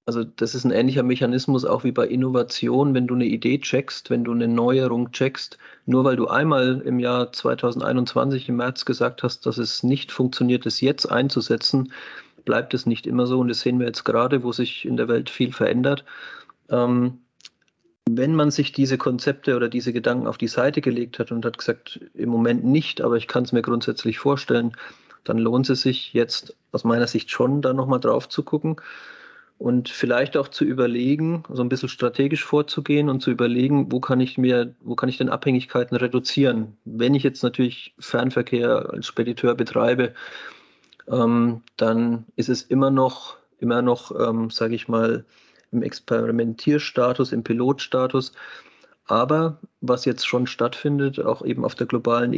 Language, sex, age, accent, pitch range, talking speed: German, male, 30-49, German, 120-135 Hz, 180 wpm